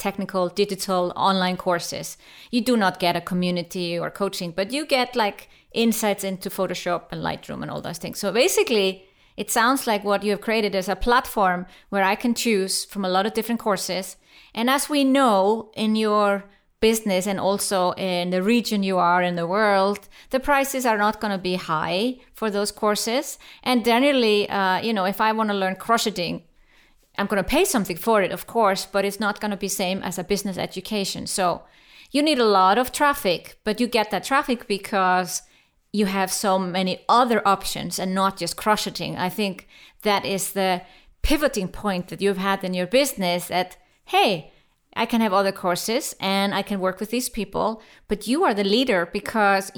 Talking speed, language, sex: 195 wpm, English, female